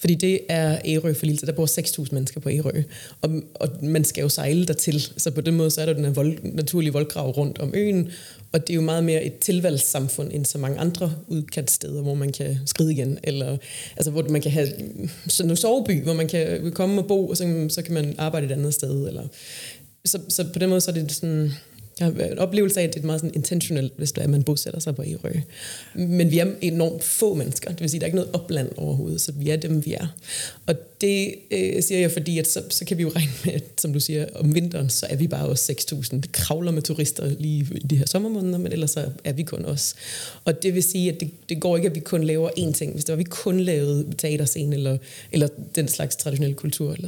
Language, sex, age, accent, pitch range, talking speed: Danish, female, 30-49, native, 145-170 Hz, 250 wpm